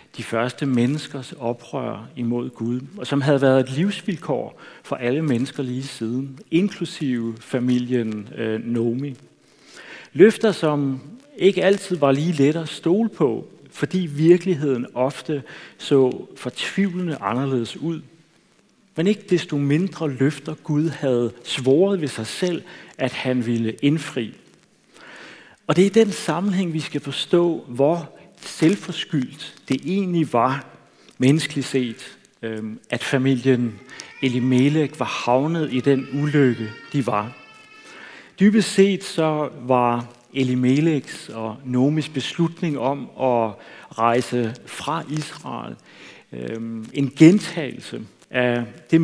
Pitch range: 125-160 Hz